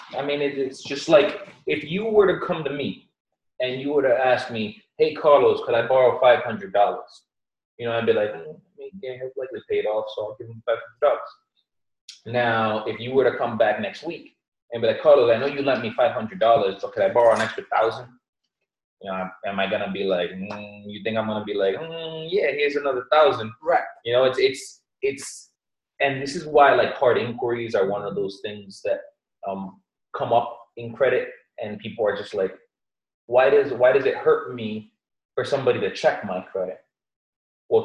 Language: English